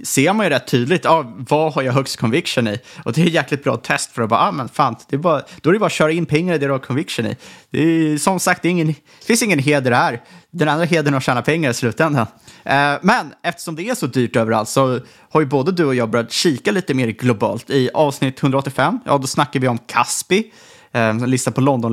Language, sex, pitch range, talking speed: Swedish, male, 130-170 Hz, 255 wpm